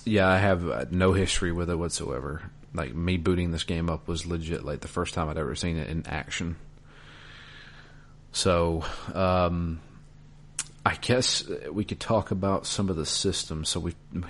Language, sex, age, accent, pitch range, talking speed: English, male, 40-59, American, 80-95 Hz, 170 wpm